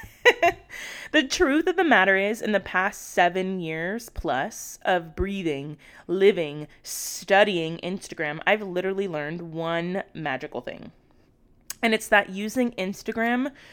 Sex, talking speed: female, 120 wpm